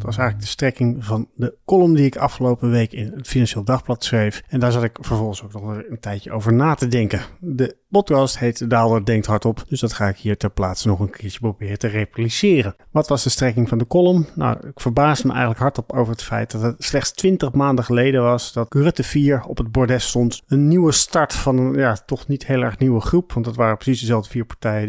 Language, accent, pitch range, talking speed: Dutch, Dutch, 110-135 Hz, 240 wpm